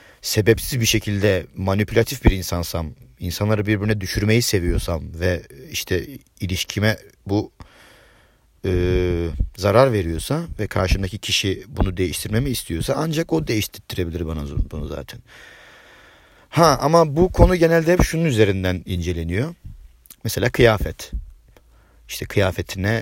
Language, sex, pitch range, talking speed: Turkish, male, 85-120 Hz, 105 wpm